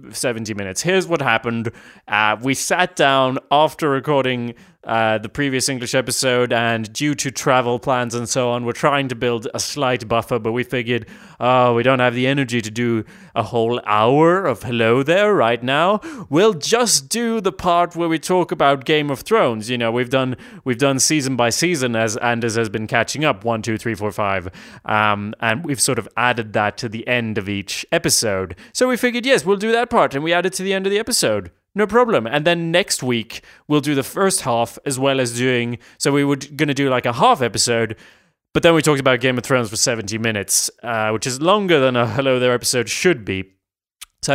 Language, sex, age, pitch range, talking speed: English, male, 20-39, 115-150 Hz, 220 wpm